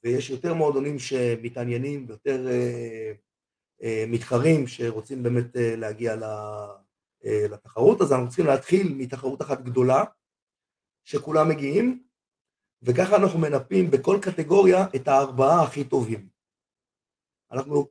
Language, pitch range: Hebrew, 125-180 Hz